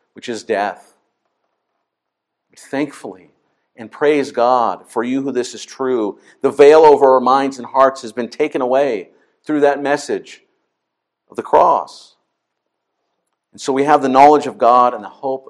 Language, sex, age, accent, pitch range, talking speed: English, male, 50-69, American, 140-195 Hz, 160 wpm